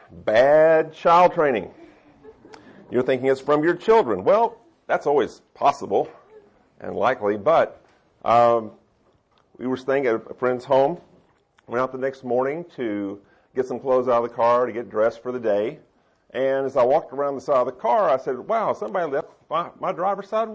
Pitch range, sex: 115-155 Hz, male